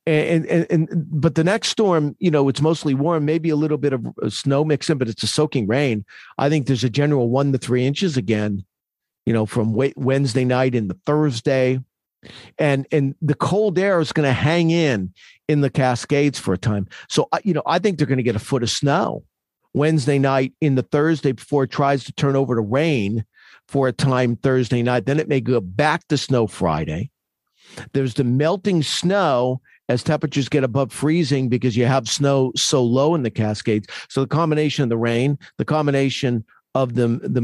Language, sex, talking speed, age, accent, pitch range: English, male, 200 wpm, 50-69, American, 125-155 Hz